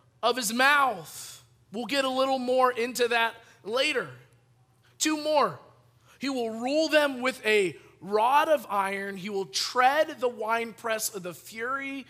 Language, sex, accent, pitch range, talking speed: English, male, American, 170-250 Hz, 150 wpm